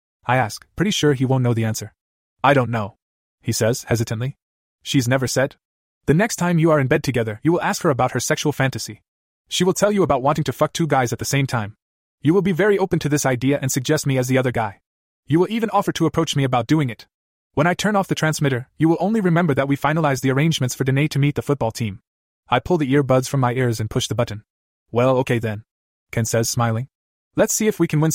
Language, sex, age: English, male, 20-39